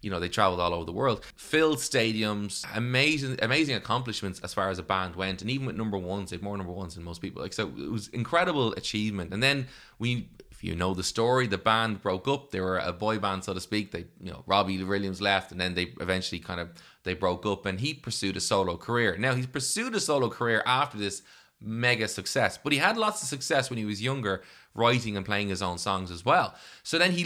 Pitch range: 95-125 Hz